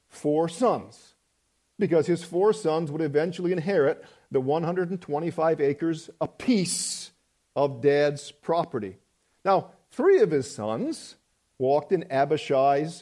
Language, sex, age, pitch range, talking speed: English, male, 50-69, 150-195 Hz, 110 wpm